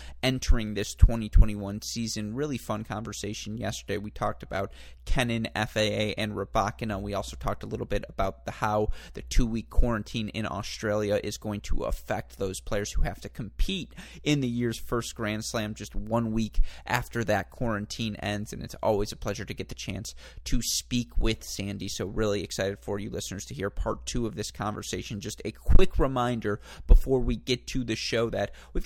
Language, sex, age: English, male, 30-49